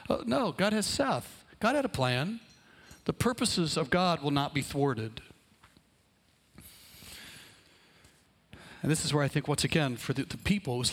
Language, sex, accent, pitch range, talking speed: English, male, American, 130-175 Hz, 165 wpm